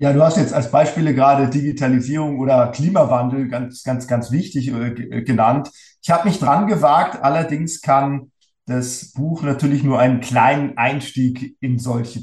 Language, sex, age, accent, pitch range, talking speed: German, male, 50-69, German, 120-145 Hz, 155 wpm